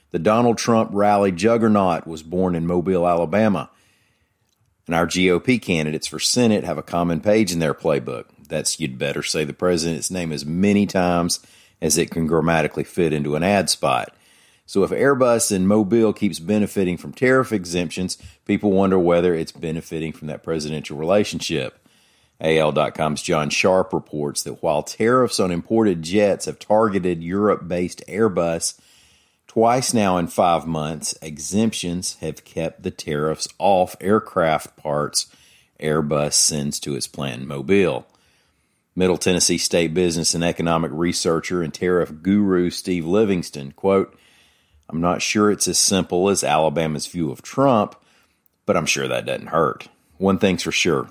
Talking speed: 150 wpm